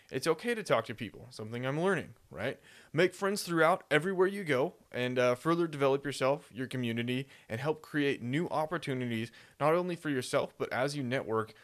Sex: male